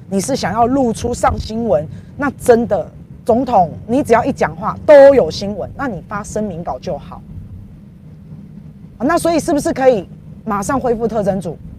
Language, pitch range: Chinese, 200-295 Hz